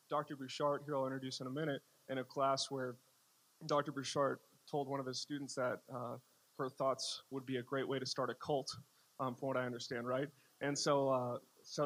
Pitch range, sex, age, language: 130-150 Hz, male, 20-39, English